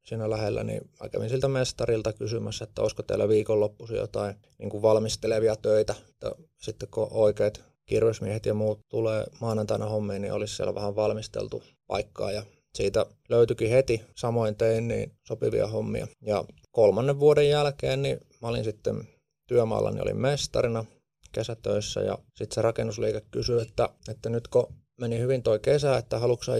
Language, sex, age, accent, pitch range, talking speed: Finnish, male, 20-39, native, 105-130 Hz, 145 wpm